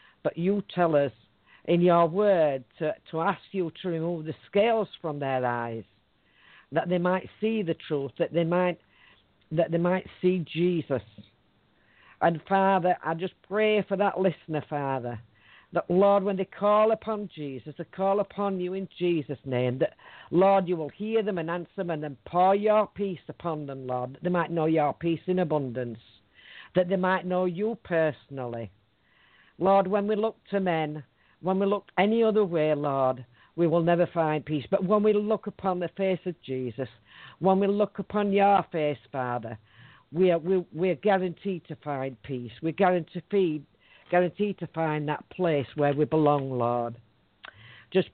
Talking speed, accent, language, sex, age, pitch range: 180 wpm, British, English, female, 50-69, 140-195 Hz